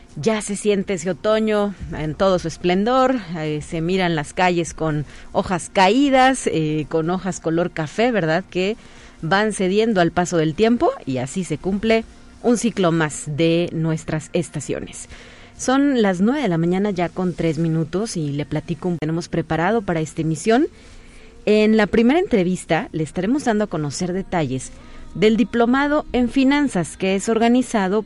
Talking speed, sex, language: 165 wpm, female, Spanish